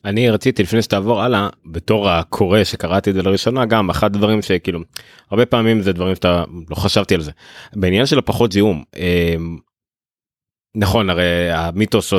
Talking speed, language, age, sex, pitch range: 160 wpm, Hebrew, 30-49, male, 85-110 Hz